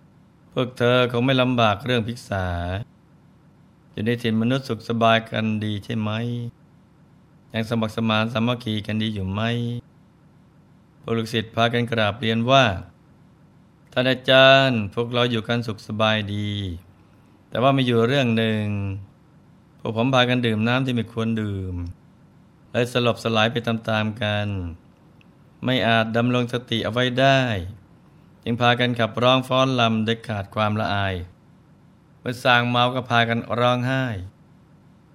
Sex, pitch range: male, 110-130 Hz